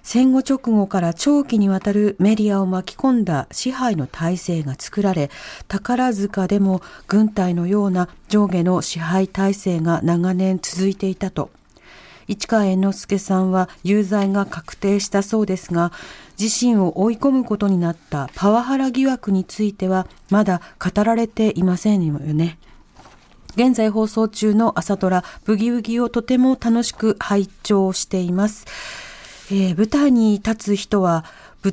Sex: female